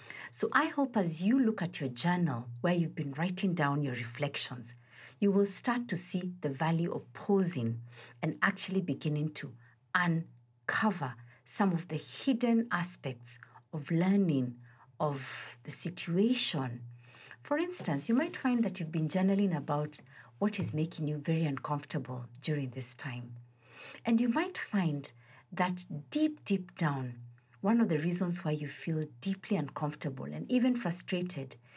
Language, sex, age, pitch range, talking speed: English, female, 50-69, 130-185 Hz, 150 wpm